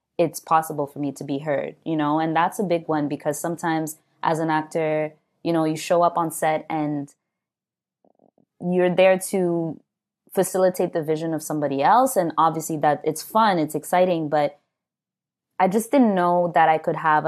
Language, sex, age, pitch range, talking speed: English, female, 20-39, 145-175 Hz, 180 wpm